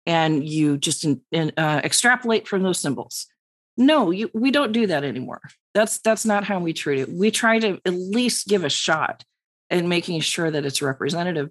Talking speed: 200 wpm